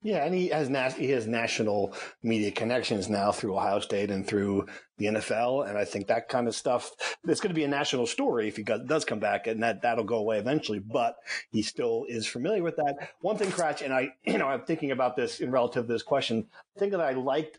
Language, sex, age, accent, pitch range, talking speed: English, male, 40-59, American, 120-170 Hz, 240 wpm